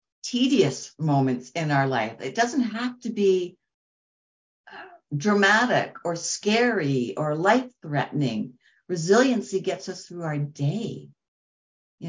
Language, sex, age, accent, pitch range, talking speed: English, female, 60-79, American, 150-195 Hz, 110 wpm